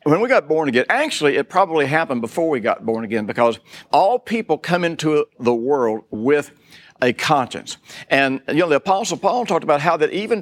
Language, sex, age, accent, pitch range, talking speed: English, male, 60-79, American, 125-185 Hz, 200 wpm